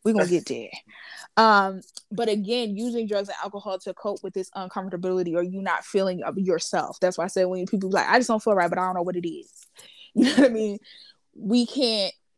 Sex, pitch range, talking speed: female, 185-215 Hz, 245 wpm